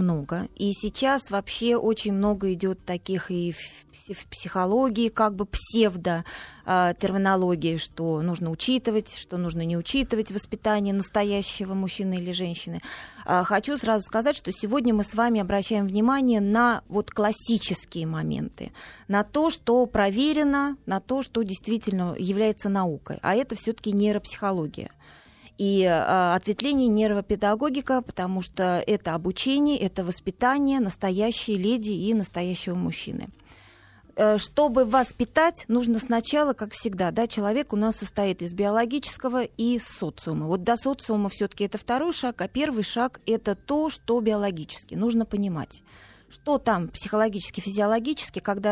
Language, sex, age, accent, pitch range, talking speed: Russian, female, 20-39, native, 190-235 Hz, 130 wpm